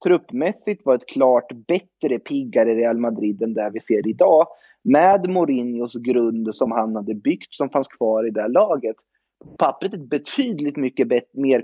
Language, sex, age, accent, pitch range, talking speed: Swedish, male, 30-49, native, 120-175 Hz, 170 wpm